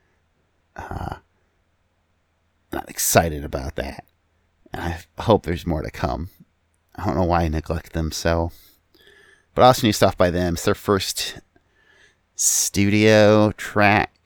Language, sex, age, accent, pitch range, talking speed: English, male, 30-49, American, 85-105 Hz, 130 wpm